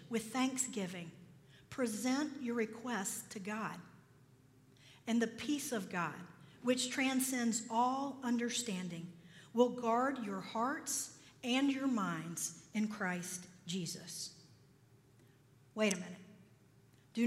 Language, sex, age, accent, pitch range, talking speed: English, female, 50-69, American, 190-295 Hz, 105 wpm